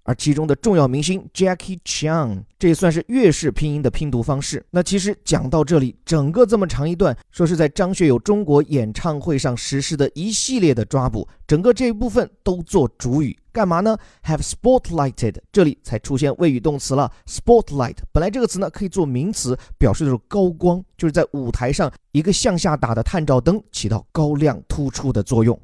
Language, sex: Chinese, male